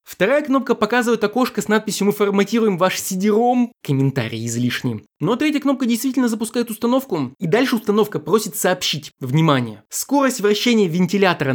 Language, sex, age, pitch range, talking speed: Russian, male, 20-39, 150-225 Hz, 140 wpm